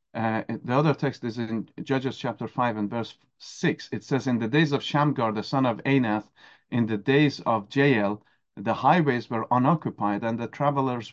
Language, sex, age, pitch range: English, male, 40-59, 120-155 Hz